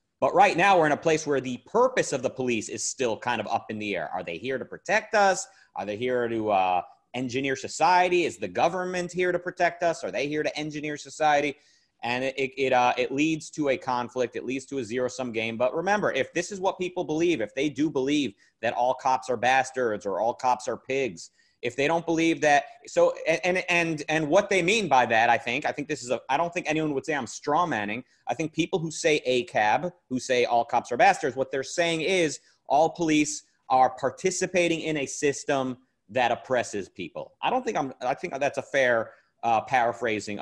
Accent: American